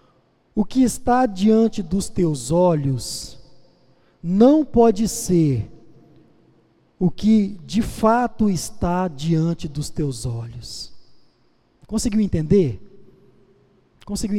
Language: Portuguese